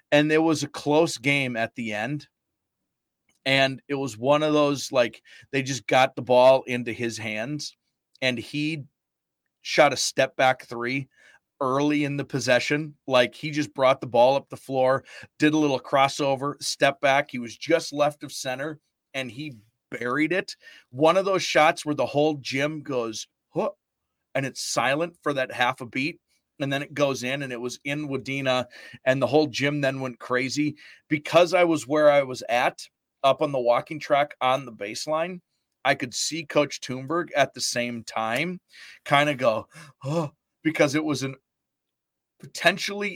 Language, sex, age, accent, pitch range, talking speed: English, male, 30-49, American, 130-155 Hz, 175 wpm